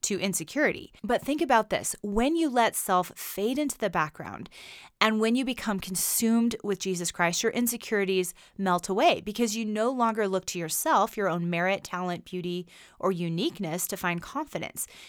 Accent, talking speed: American, 170 wpm